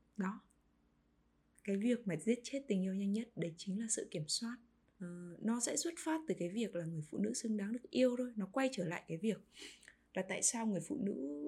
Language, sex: Vietnamese, female